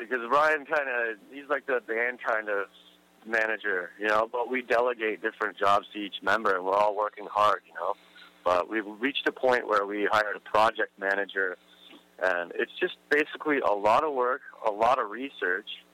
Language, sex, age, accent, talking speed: English, male, 30-49, American, 190 wpm